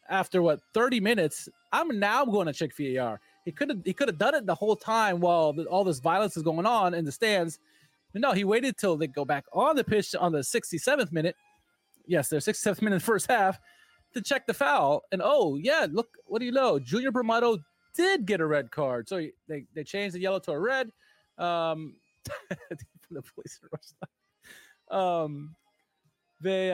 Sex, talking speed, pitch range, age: male, 195 wpm, 155-205 Hz, 20-39